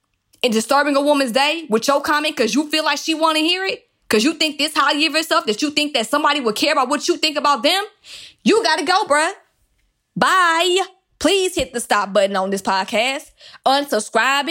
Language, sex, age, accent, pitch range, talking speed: English, female, 20-39, American, 235-315 Hz, 220 wpm